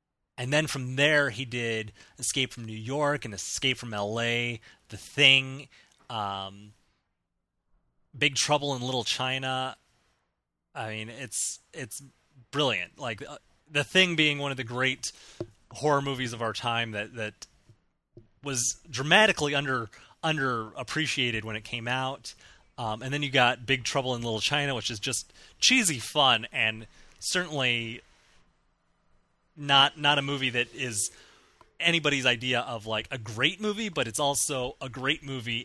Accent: American